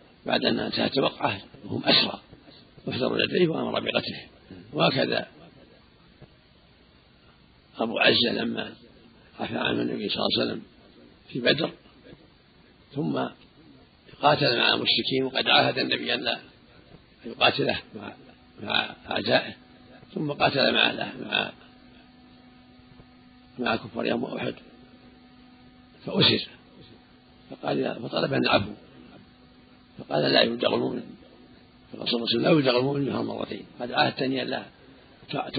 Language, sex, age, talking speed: Arabic, male, 50-69, 105 wpm